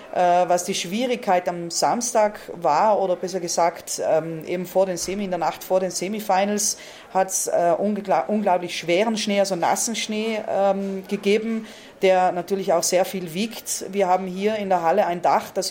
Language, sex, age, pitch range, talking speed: German, female, 30-49, 175-205 Hz, 170 wpm